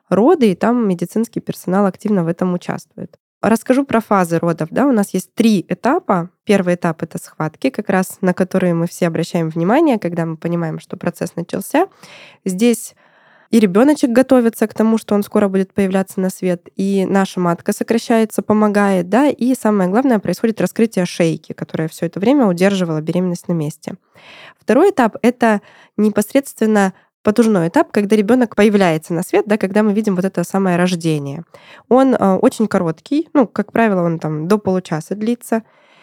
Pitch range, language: 180-230 Hz, Russian